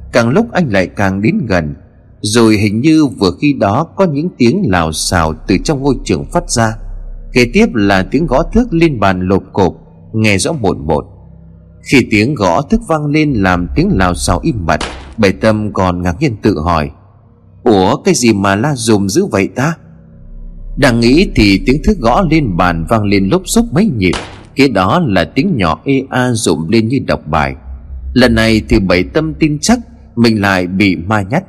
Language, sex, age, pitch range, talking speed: Vietnamese, male, 30-49, 90-140 Hz, 200 wpm